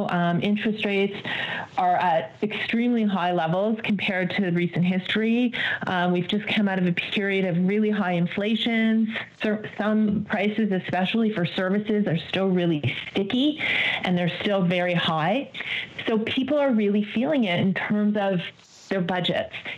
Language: English